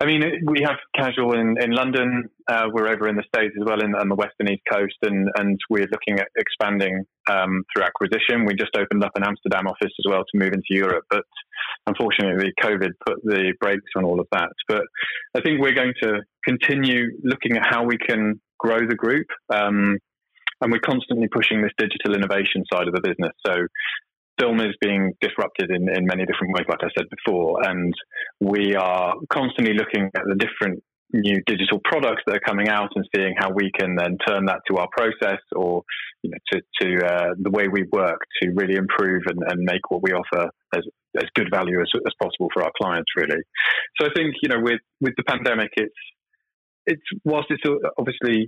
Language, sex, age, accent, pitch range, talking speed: English, male, 20-39, British, 95-125 Hz, 205 wpm